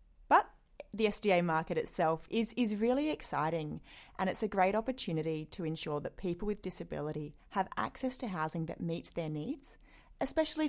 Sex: female